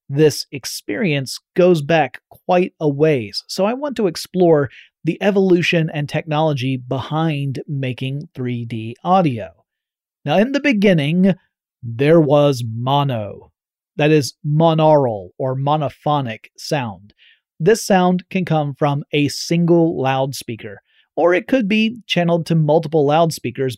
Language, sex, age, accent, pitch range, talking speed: English, male, 30-49, American, 135-180 Hz, 125 wpm